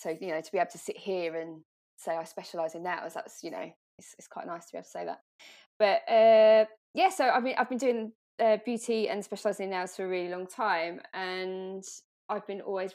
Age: 20-39